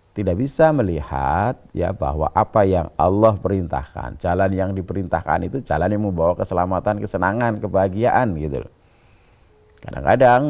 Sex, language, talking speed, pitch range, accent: male, Indonesian, 125 wpm, 80-105 Hz, native